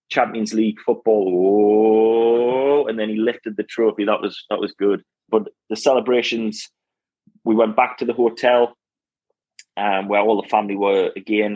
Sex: male